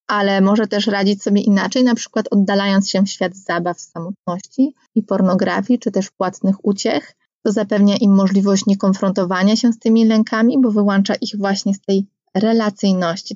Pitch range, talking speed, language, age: 190-225 Hz, 160 wpm, Polish, 20-39